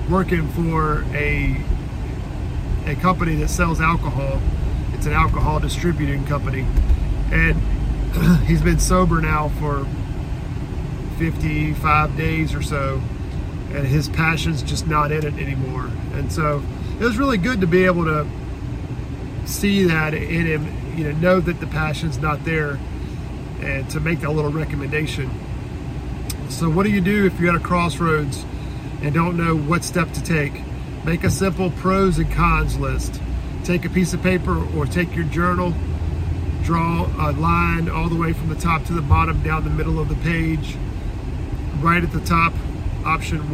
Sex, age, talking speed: male, 40-59, 160 wpm